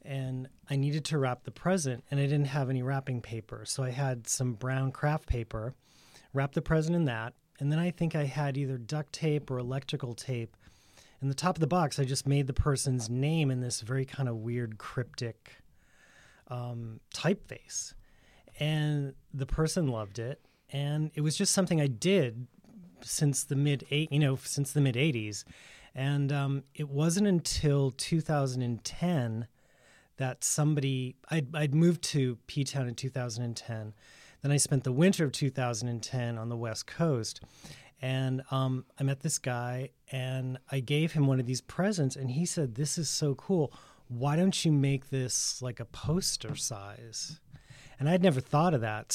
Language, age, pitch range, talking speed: English, 30-49, 125-150 Hz, 170 wpm